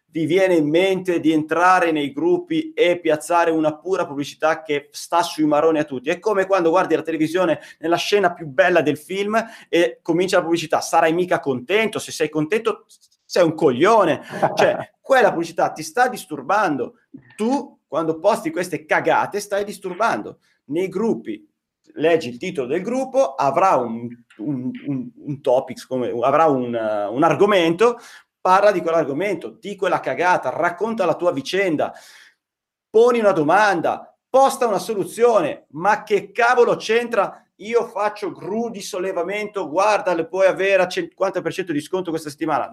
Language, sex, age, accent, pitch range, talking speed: Italian, male, 30-49, native, 160-220 Hz, 155 wpm